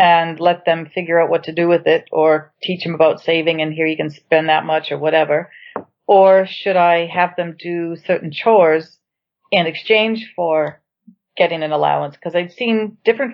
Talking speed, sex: 190 wpm, female